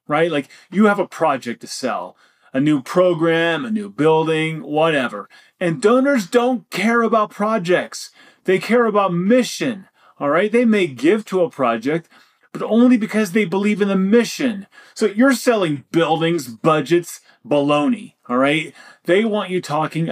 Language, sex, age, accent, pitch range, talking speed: English, male, 30-49, American, 160-220 Hz, 160 wpm